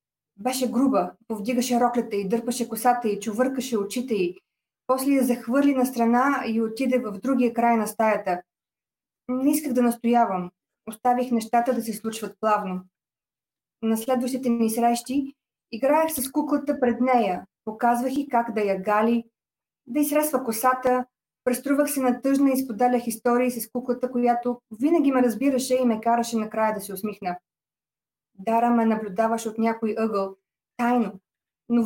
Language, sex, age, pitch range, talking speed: Polish, female, 20-39, 220-255 Hz, 145 wpm